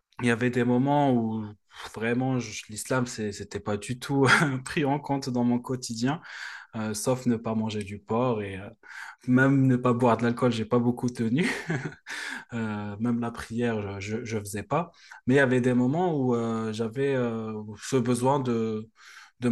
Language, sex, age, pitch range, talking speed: French, male, 20-39, 105-125 Hz, 165 wpm